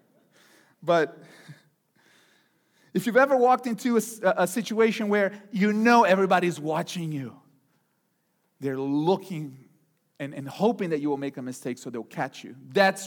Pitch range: 165-245 Hz